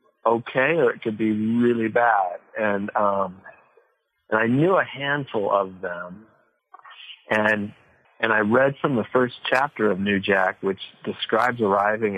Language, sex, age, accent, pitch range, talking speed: English, male, 40-59, American, 100-115 Hz, 150 wpm